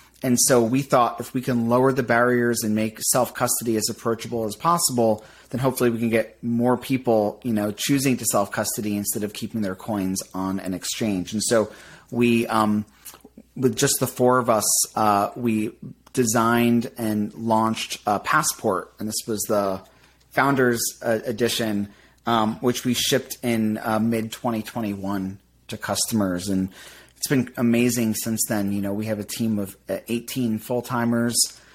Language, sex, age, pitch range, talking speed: English, male, 30-49, 105-120 Hz, 165 wpm